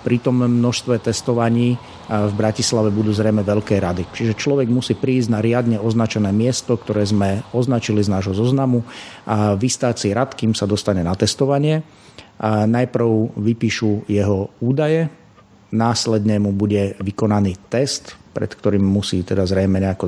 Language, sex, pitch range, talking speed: Slovak, male, 100-115 Hz, 145 wpm